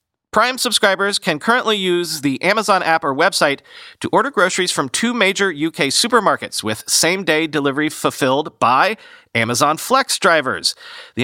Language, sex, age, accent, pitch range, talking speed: English, male, 40-59, American, 140-180 Hz, 145 wpm